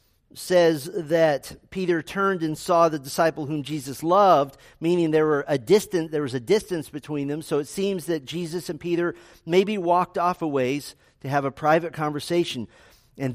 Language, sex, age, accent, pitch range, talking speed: English, male, 40-59, American, 140-175 Hz, 180 wpm